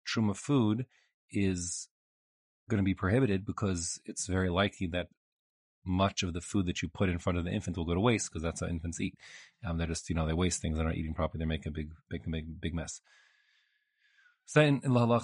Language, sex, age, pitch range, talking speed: English, male, 30-49, 85-115 Hz, 220 wpm